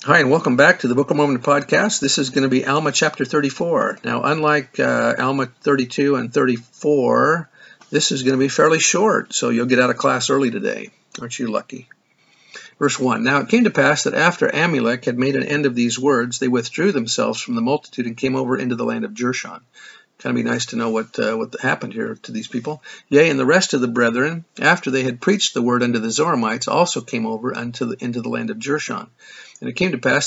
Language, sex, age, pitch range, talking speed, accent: English, male, 50-69, 120-145 Hz, 235 wpm, American